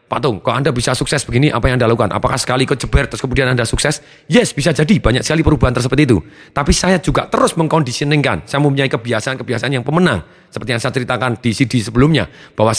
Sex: male